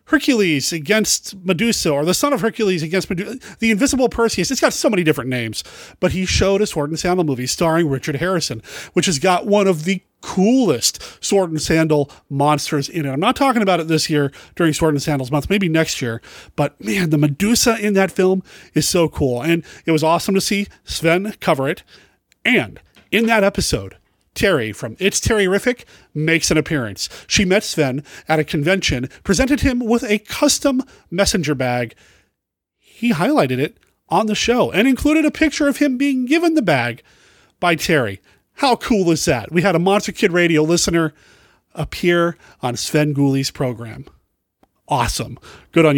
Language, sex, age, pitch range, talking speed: English, male, 30-49, 145-210 Hz, 180 wpm